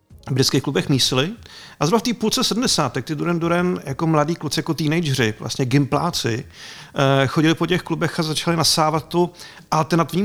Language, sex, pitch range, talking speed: Czech, male, 135-170 Hz, 170 wpm